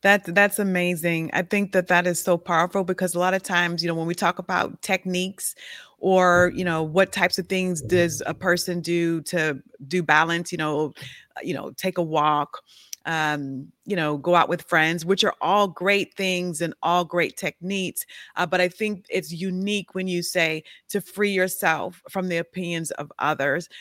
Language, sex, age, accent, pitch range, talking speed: English, female, 30-49, American, 175-200 Hz, 190 wpm